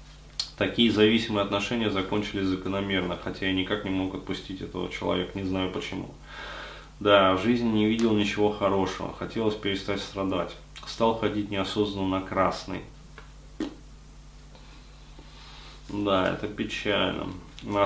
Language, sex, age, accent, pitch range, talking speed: Russian, male, 20-39, native, 95-105 Hz, 115 wpm